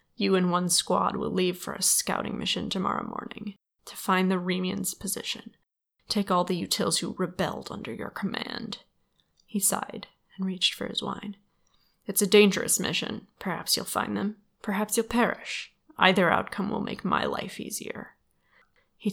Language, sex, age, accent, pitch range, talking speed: English, female, 20-39, American, 190-215 Hz, 165 wpm